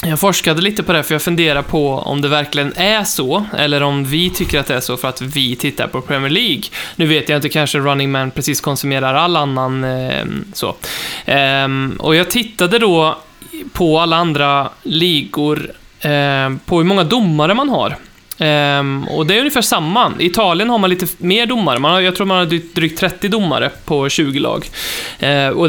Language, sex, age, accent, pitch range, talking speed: Swedish, male, 20-39, native, 140-175 Hz, 180 wpm